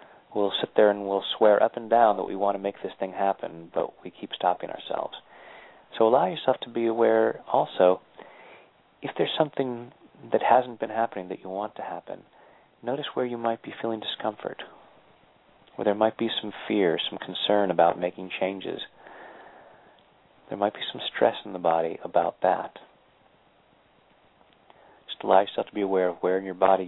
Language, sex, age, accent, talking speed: English, male, 40-59, American, 180 wpm